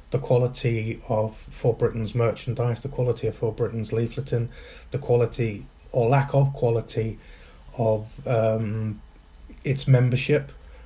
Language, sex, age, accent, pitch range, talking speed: English, male, 30-49, British, 110-130 Hz, 120 wpm